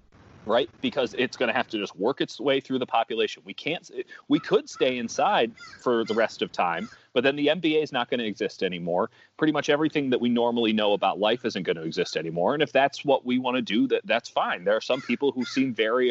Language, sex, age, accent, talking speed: English, male, 30-49, American, 250 wpm